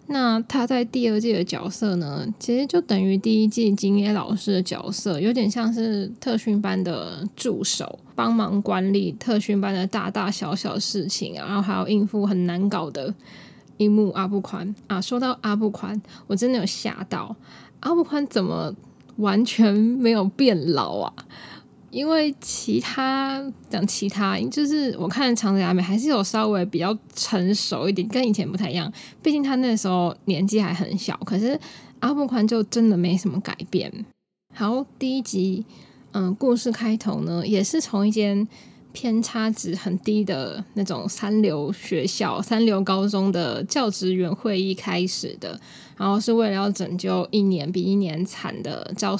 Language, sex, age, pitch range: Chinese, female, 10-29, 190-225 Hz